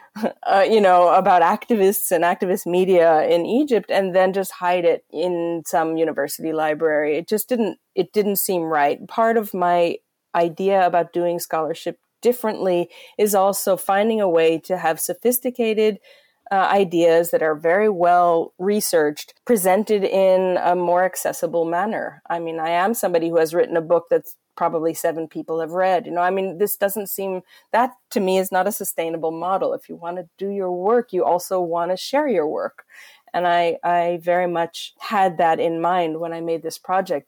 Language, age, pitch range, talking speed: English, 30-49, 170-200 Hz, 185 wpm